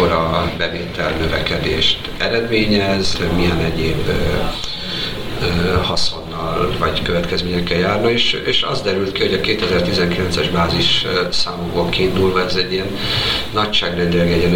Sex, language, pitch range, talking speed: male, Hungarian, 85-95 Hz, 110 wpm